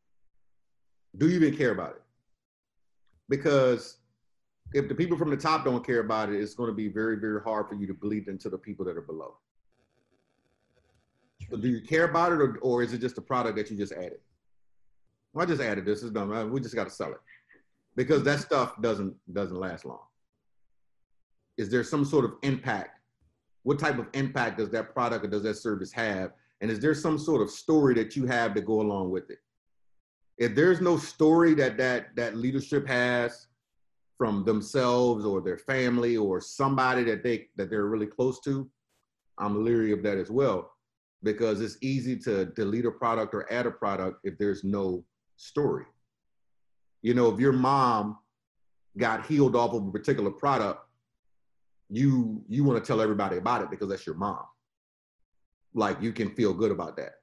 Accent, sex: American, male